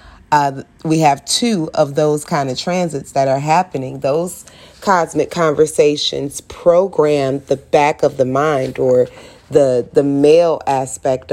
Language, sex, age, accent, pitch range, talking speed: English, female, 30-49, American, 135-175 Hz, 140 wpm